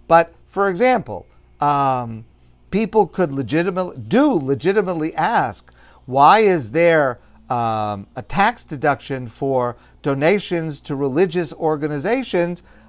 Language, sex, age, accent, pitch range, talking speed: English, male, 50-69, American, 145-180 Hz, 100 wpm